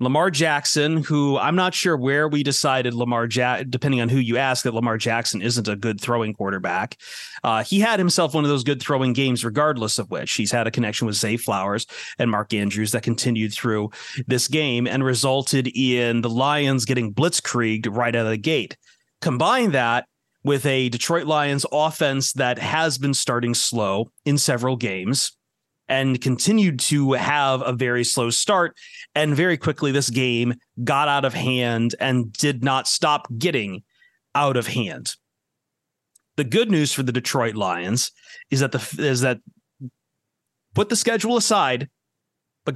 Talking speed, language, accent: 170 wpm, English, American